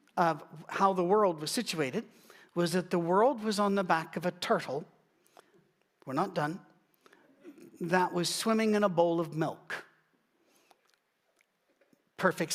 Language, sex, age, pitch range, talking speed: English, male, 60-79, 165-200 Hz, 140 wpm